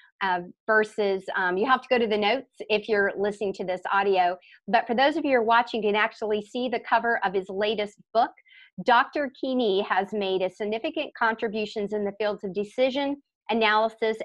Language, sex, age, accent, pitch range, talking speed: English, female, 40-59, American, 200-250 Hz, 195 wpm